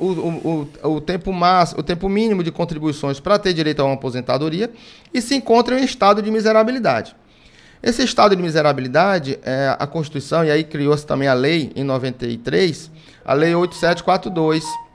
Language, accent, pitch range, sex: Portuguese, Brazilian, 145-195 Hz, male